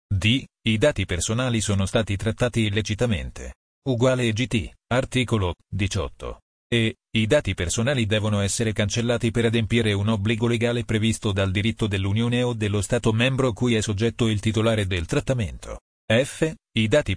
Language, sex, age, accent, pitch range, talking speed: Italian, male, 40-59, native, 100-120 Hz, 145 wpm